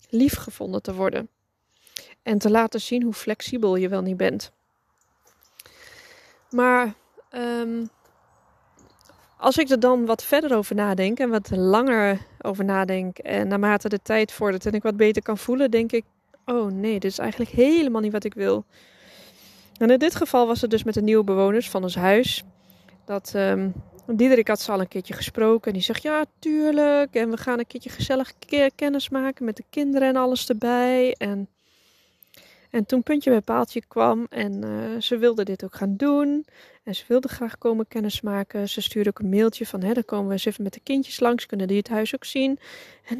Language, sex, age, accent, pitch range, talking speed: Dutch, female, 20-39, Dutch, 200-255 Hz, 190 wpm